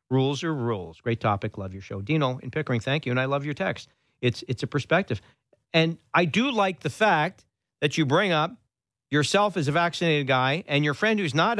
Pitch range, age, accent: 130-195 Hz, 50-69, American